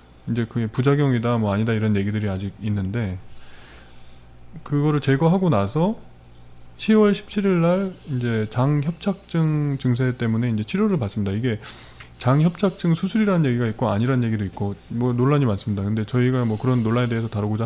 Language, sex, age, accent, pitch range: Korean, male, 20-39, native, 105-150 Hz